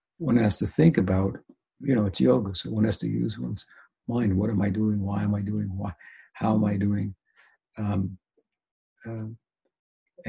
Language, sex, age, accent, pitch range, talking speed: English, male, 60-79, American, 100-115 Hz, 180 wpm